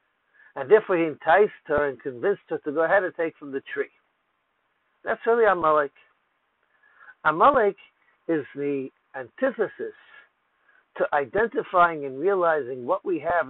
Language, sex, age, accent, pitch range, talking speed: English, male, 60-79, American, 150-225 Hz, 135 wpm